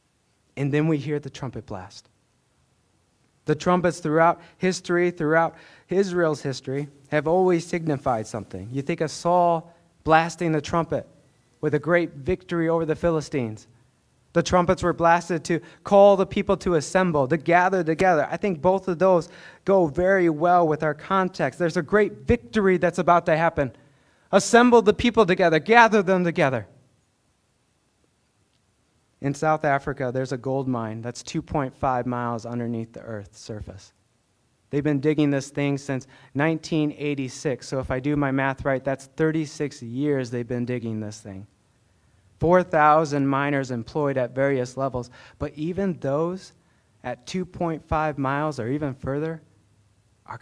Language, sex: English, male